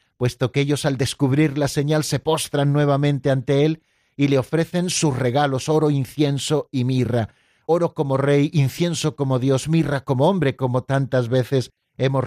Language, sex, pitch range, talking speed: Spanish, male, 135-170 Hz, 165 wpm